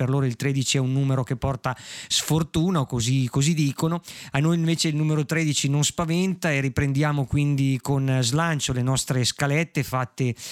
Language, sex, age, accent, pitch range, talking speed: Italian, male, 20-39, native, 135-155 Hz, 170 wpm